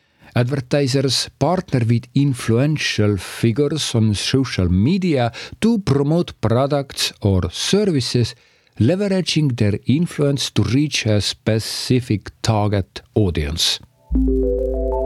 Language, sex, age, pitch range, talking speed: English, male, 50-69, 110-135 Hz, 90 wpm